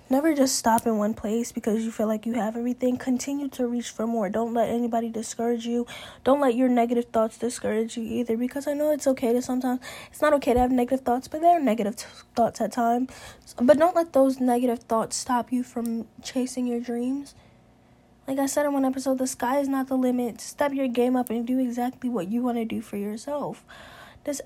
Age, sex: 10-29, female